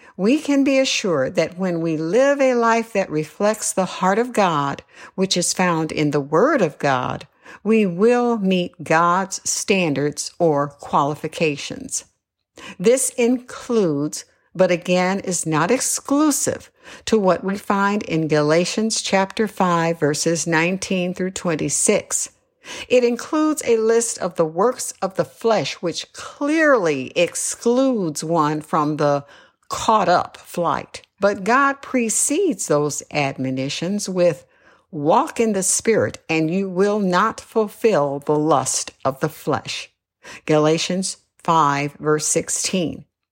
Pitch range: 160-230 Hz